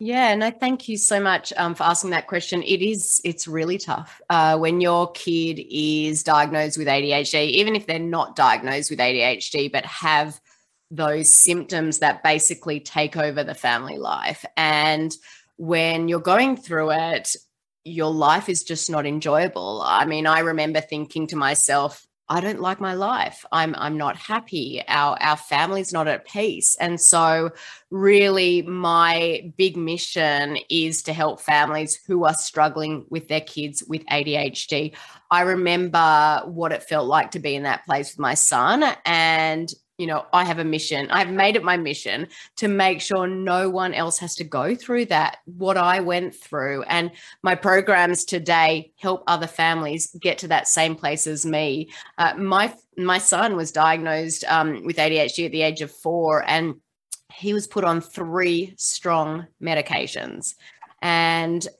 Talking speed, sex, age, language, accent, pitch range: 170 wpm, female, 20-39, English, Australian, 155-180 Hz